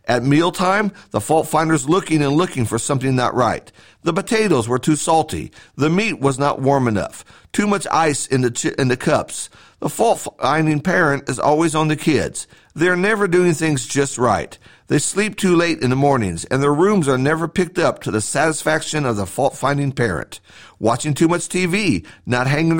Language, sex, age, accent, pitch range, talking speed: English, male, 50-69, American, 125-175 Hz, 185 wpm